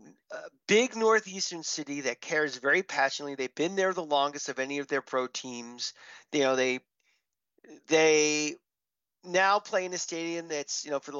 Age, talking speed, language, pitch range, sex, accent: 40-59, 175 wpm, English, 145-200 Hz, male, American